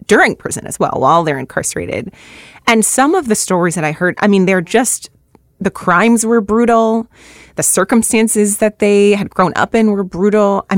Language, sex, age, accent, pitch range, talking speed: English, female, 30-49, American, 175-225 Hz, 190 wpm